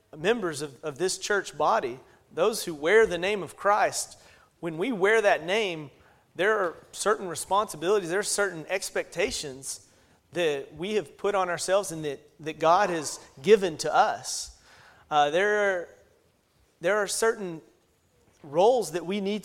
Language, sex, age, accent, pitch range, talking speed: English, male, 30-49, American, 155-195 Hz, 155 wpm